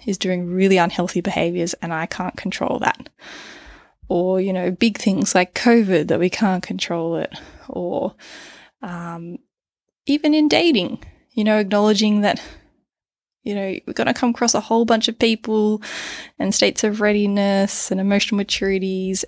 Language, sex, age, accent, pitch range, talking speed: English, female, 20-39, Australian, 185-225 Hz, 155 wpm